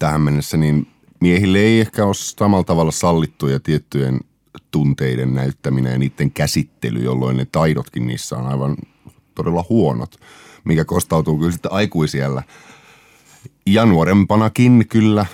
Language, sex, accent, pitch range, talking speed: Finnish, male, native, 70-95 Hz, 125 wpm